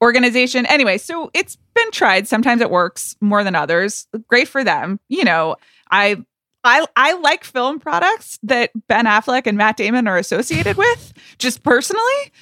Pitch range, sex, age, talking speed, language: 195-245 Hz, female, 20-39, 165 wpm, English